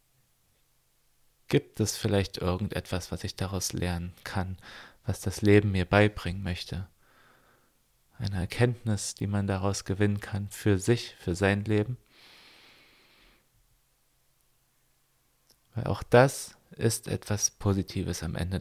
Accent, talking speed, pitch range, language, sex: German, 115 wpm, 90-110 Hz, German, male